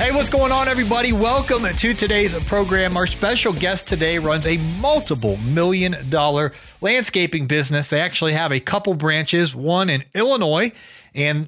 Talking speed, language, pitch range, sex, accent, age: 155 wpm, English, 140-190 Hz, male, American, 30-49